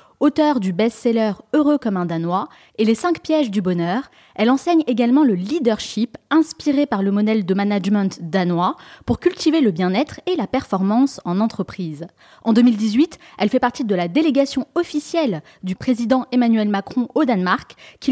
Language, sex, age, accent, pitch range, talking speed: French, female, 20-39, French, 205-285 Hz, 180 wpm